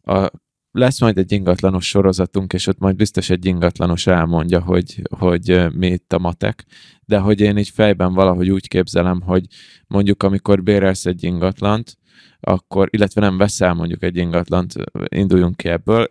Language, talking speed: Hungarian, 160 wpm